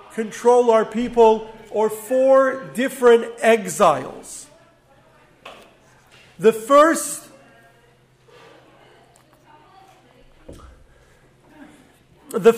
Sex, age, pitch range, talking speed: male, 40-59, 215-260 Hz, 50 wpm